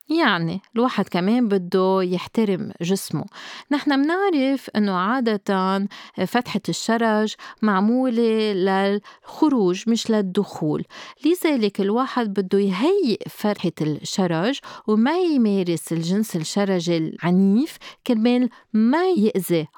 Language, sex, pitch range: Arabic, female, 180-230 Hz